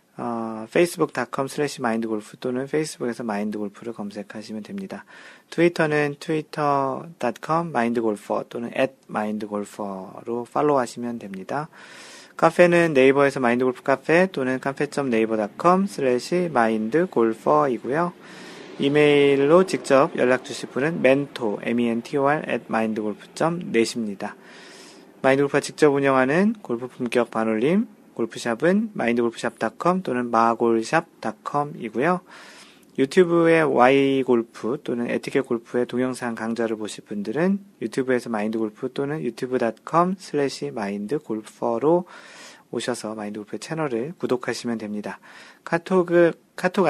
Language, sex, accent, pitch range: Korean, male, native, 115-155 Hz